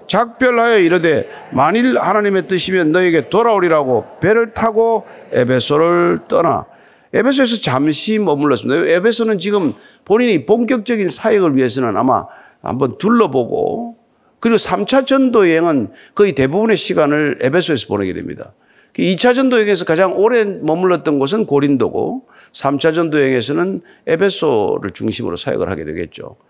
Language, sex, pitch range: Korean, male, 165-230 Hz